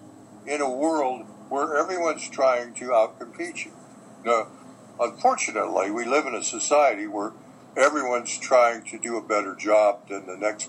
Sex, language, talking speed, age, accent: male, English, 150 wpm, 60-79, American